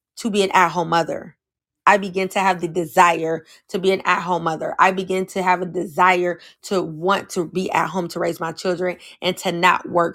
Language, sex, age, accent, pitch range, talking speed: English, female, 20-39, American, 175-195 Hz, 215 wpm